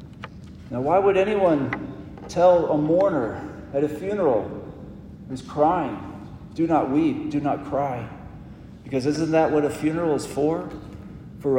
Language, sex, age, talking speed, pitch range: English, male, 50-69, 140 wpm, 120-150 Hz